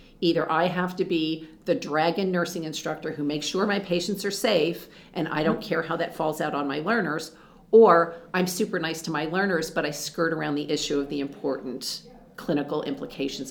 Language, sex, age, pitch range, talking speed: English, female, 40-59, 150-185 Hz, 200 wpm